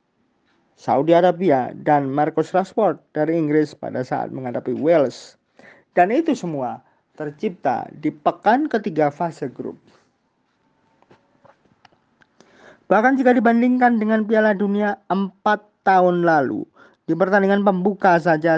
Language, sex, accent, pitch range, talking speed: Indonesian, male, native, 155-210 Hz, 105 wpm